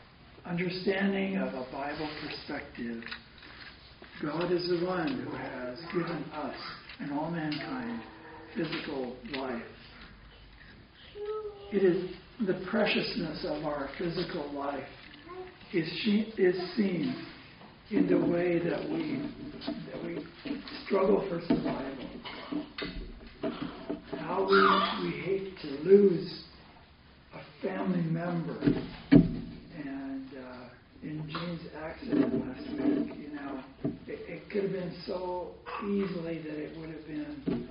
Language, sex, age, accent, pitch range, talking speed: English, male, 60-79, American, 145-215 Hz, 110 wpm